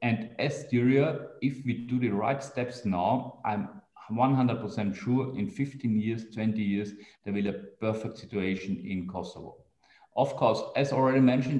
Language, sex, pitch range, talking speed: German, male, 110-135 Hz, 160 wpm